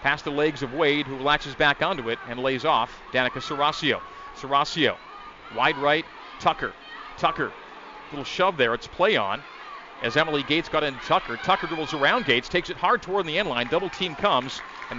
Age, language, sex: 40-59, English, male